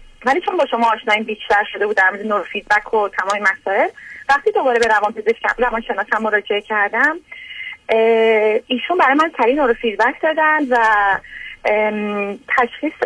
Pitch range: 220-290 Hz